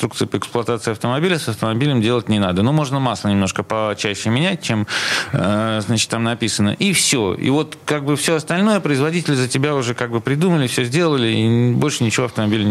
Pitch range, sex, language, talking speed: 110-155 Hz, male, Russian, 185 wpm